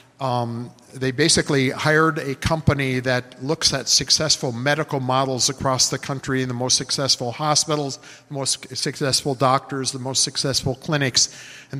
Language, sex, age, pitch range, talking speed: English, male, 50-69, 130-150 Hz, 150 wpm